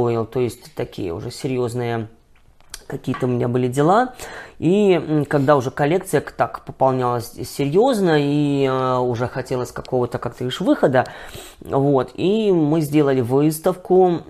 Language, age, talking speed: Russian, 20-39, 120 wpm